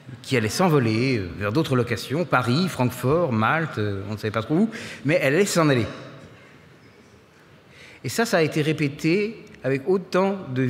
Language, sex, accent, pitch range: French, male, French, 120-150 Hz